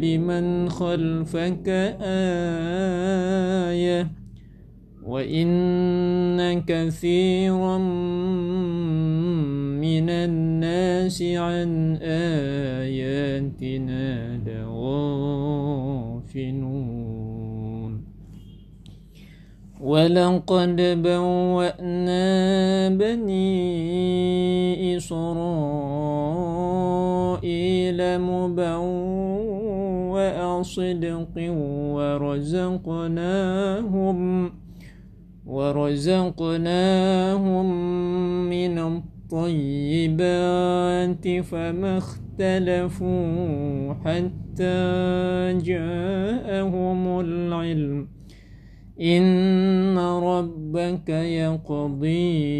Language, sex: Indonesian, male